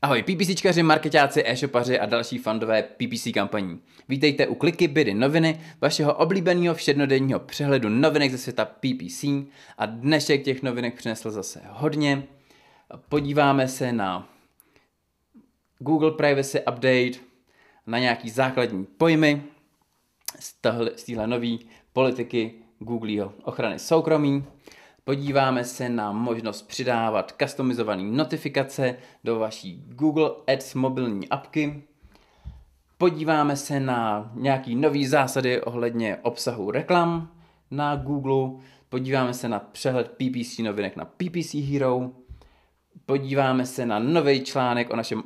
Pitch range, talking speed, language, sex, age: 115-145 Hz, 115 wpm, Czech, male, 20-39